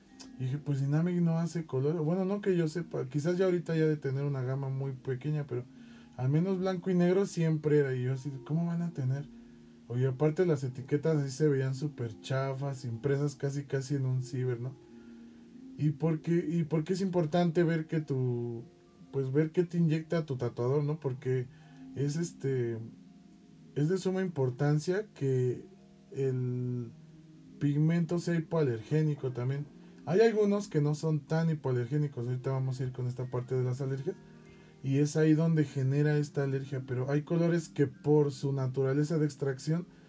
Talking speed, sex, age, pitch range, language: 175 wpm, male, 20-39, 130-165 Hz, Spanish